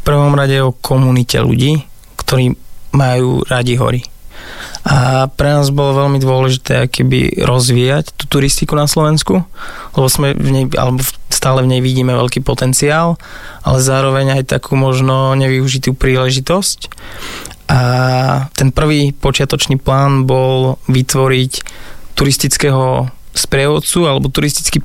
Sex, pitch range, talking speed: male, 130-140 Hz, 125 wpm